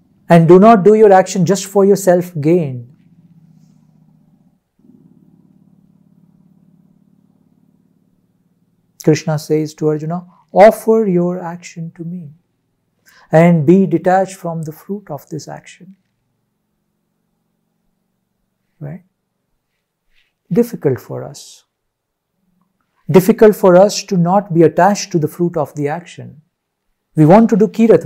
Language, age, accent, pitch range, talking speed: English, 50-69, Indian, 170-205 Hz, 105 wpm